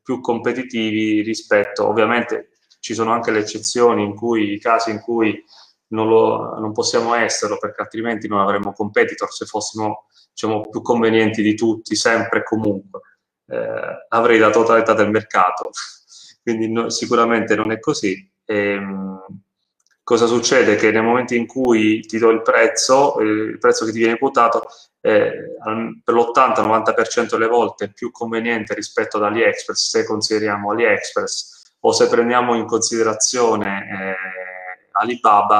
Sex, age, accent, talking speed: male, 20-39, native, 140 wpm